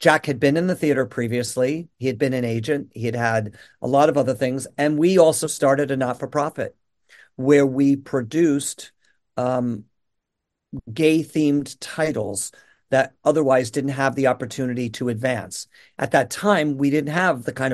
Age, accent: 50-69, American